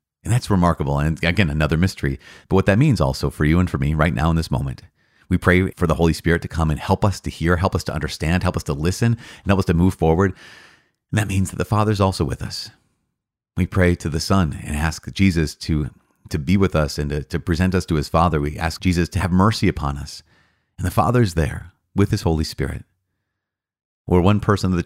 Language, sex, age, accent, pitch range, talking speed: English, male, 30-49, American, 75-95 Hz, 240 wpm